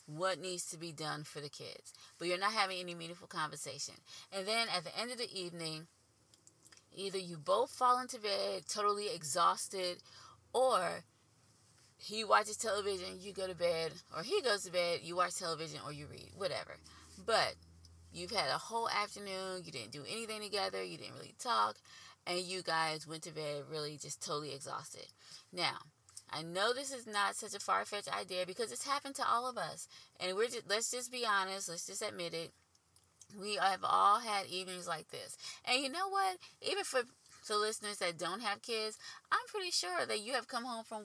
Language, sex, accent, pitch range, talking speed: English, female, American, 160-215 Hz, 195 wpm